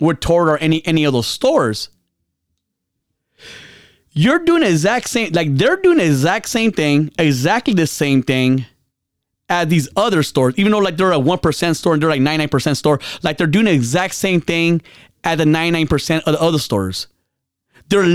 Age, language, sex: 30-49, English, male